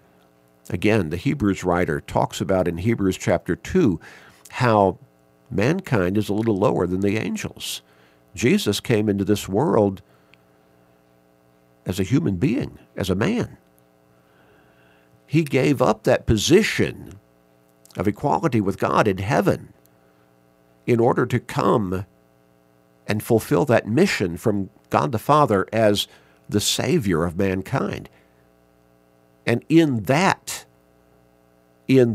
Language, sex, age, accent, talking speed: English, male, 50-69, American, 120 wpm